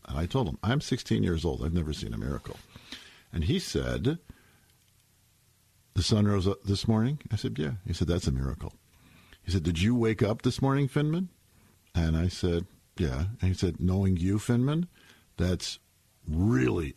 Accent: American